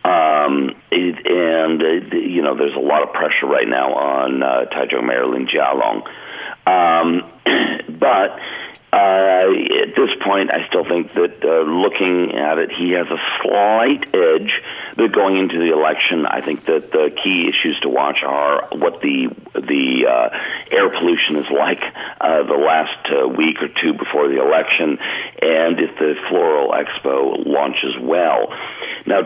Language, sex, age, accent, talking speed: English, male, 50-69, American, 160 wpm